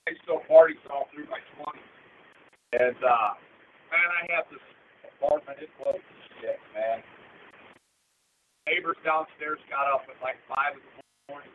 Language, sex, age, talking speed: English, male, 50-69, 150 wpm